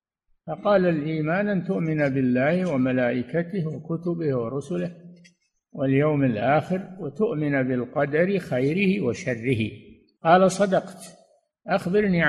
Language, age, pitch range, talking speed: Arabic, 60-79, 145-195 Hz, 85 wpm